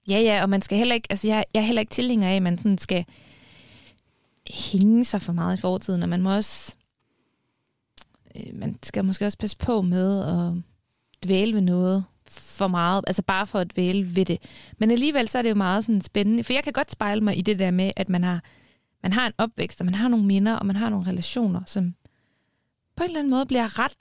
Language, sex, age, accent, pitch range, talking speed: Danish, female, 20-39, native, 180-215 Hz, 235 wpm